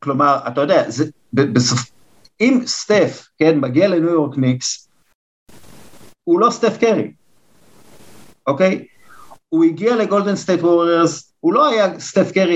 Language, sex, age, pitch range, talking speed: Hebrew, male, 50-69, 125-165 Hz, 125 wpm